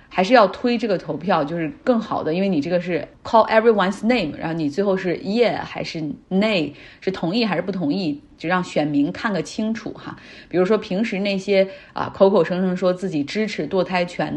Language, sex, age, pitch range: Chinese, female, 30-49, 170-210 Hz